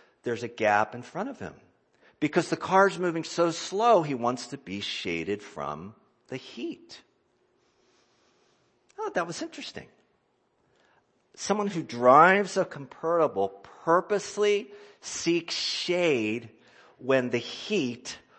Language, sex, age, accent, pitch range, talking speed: English, male, 50-69, American, 115-170 Hz, 120 wpm